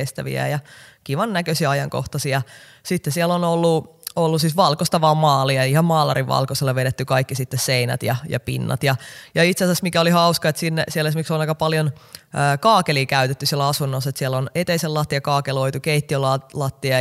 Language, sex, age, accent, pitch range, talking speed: Finnish, female, 20-39, native, 130-155 Hz, 175 wpm